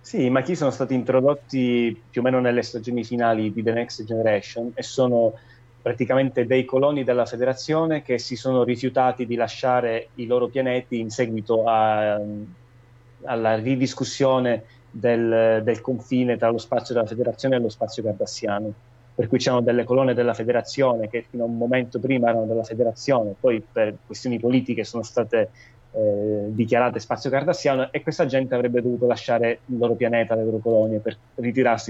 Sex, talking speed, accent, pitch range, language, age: male, 170 wpm, native, 115-125 Hz, Italian, 30-49